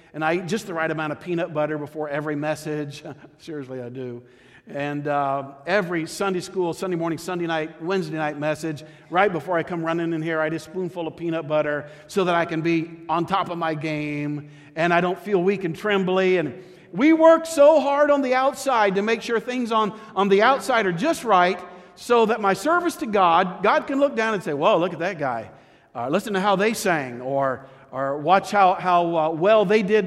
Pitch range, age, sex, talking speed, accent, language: 160-200 Hz, 50-69, male, 220 wpm, American, English